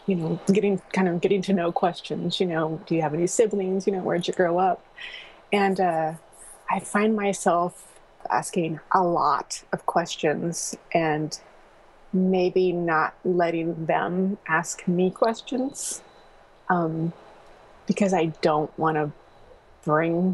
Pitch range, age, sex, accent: 165-195 Hz, 20-39, female, American